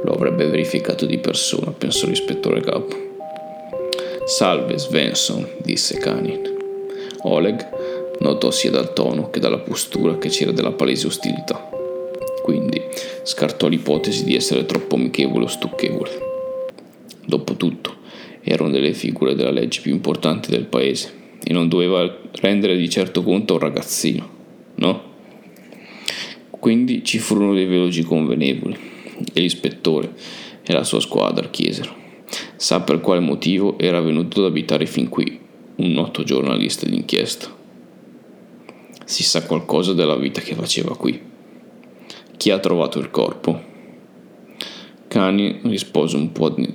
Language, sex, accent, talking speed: Italian, male, native, 125 wpm